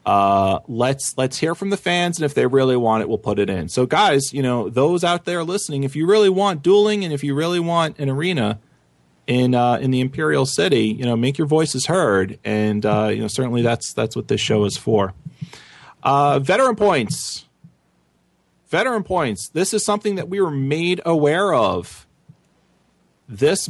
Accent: American